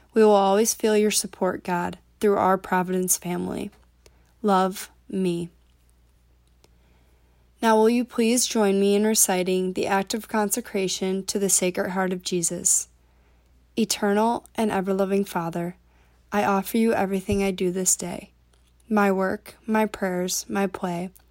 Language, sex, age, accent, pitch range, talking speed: English, female, 20-39, American, 185-215 Hz, 140 wpm